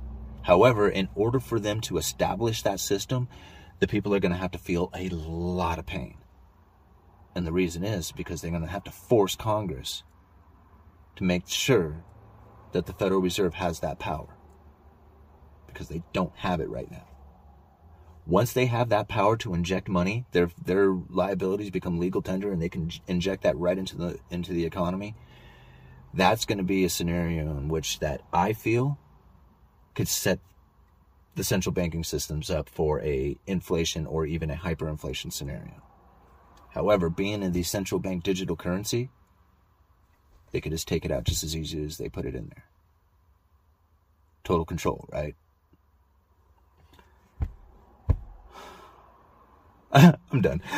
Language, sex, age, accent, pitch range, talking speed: English, male, 30-49, American, 80-95 Hz, 150 wpm